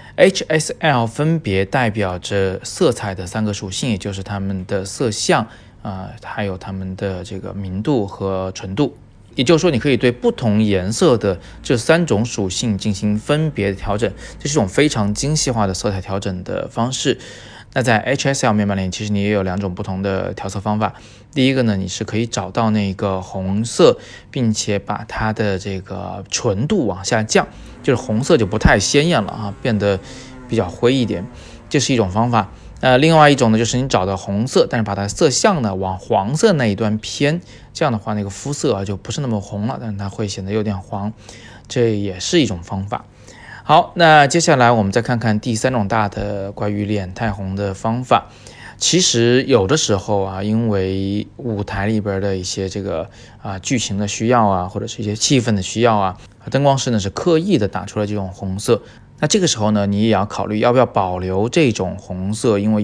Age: 20-39